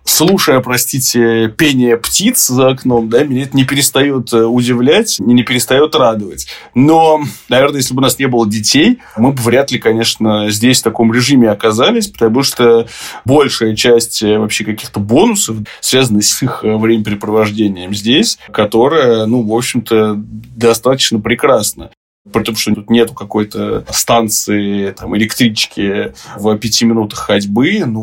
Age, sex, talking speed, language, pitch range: 20-39, male, 140 wpm, Russian, 110-125 Hz